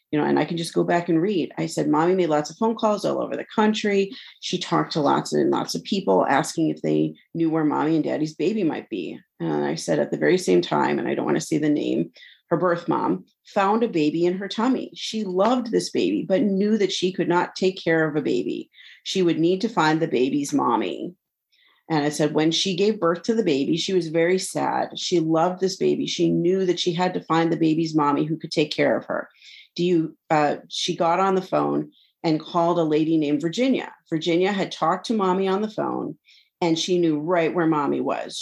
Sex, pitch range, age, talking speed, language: female, 155-195 Hz, 40-59, 235 wpm, English